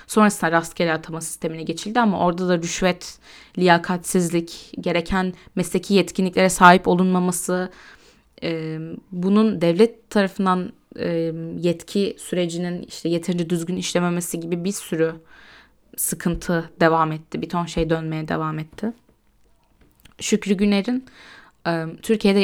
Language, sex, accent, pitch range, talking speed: Turkish, female, native, 165-200 Hz, 105 wpm